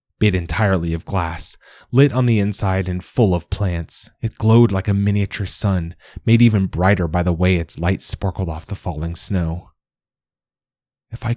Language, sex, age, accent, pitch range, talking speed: English, male, 30-49, American, 90-120 Hz, 175 wpm